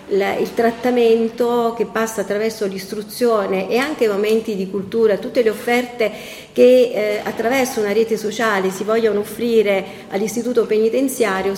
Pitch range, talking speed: 200-235 Hz, 130 wpm